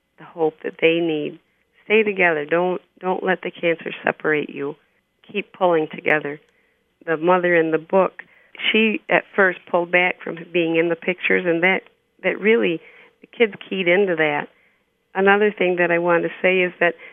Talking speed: 170 wpm